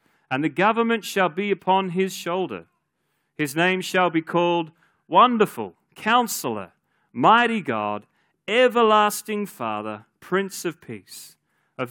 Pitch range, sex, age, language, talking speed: 115-185 Hz, male, 40-59, English, 115 wpm